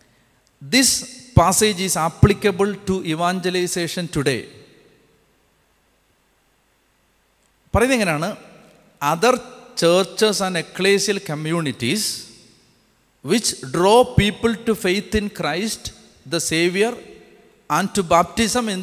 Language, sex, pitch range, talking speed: Malayalam, male, 135-200 Hz, 85 wpm